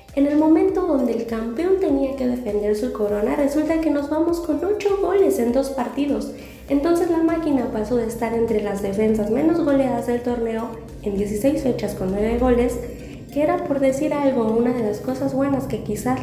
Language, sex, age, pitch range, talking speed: Spanish, female, 20-39, 230-310 Hz, 190 wpm